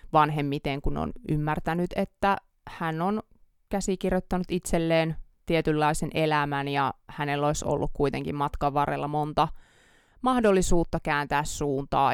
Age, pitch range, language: 20-39, 145-170 Hz, Finnish